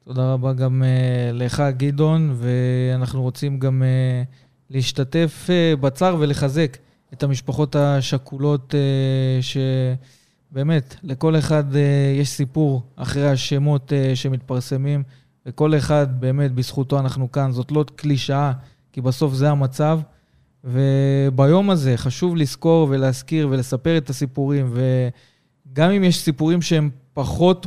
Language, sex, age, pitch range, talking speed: Hebrew, male, 20-39, 130-150 Hz, 120 wpm